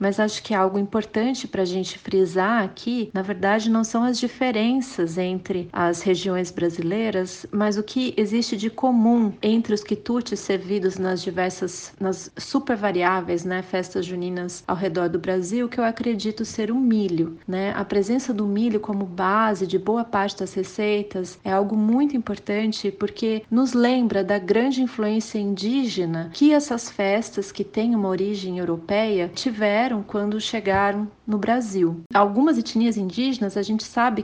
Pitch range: 190-230 Hz